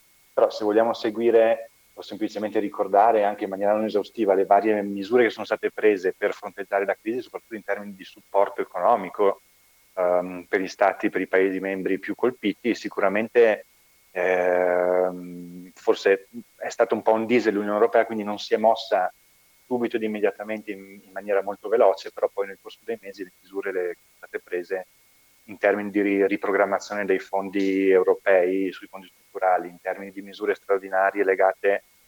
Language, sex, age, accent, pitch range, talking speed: Italian, male, 30-49, native, 95-110 Hz, 165 wpm